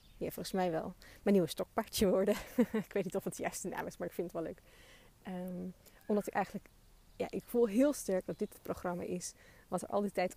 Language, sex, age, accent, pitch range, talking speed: Dutch, female, 20-39, Dutch, 175-205 Hz, 245 wpm